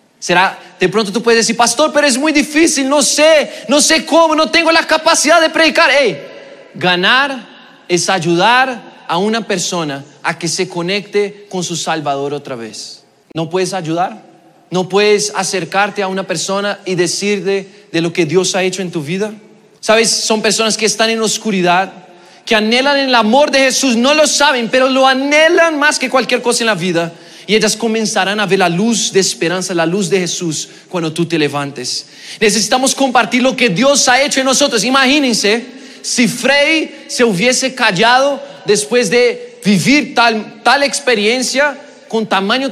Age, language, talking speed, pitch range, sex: 30-49, Spanish, 175 wpm, 190-275 Hz, male